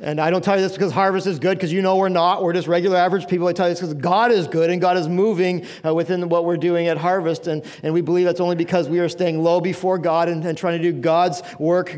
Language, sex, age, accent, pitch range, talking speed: English, male, 40-59, American, 170-220 Hz, 295 wpm